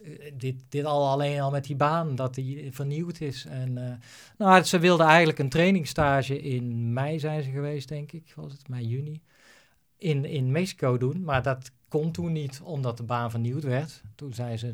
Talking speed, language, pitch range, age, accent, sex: 185 wpm, Dutch, 125-145 Hz, 40-59, Dutch, male